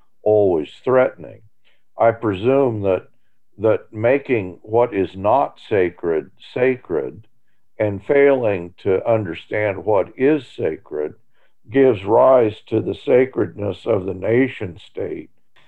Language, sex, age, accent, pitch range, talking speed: English, male, 50-69, American, 105-135 Hz, 105 wpm